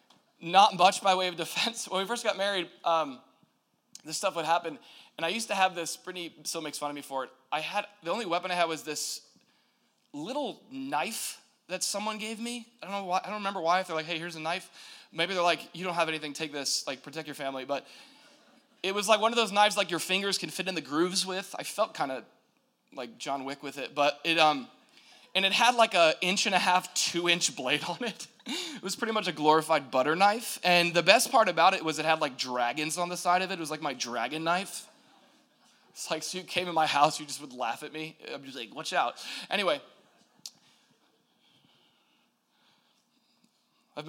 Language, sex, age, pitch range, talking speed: English, male, 20-39, 150-200 Hz, 225 wpm